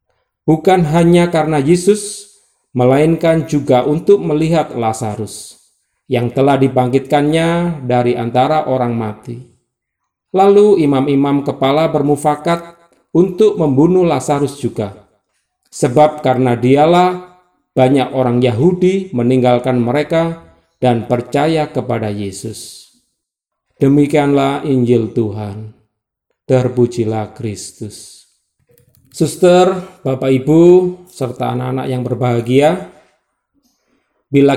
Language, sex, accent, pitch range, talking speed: Indonesian, male, native, 125-160 Hz, 85 wpm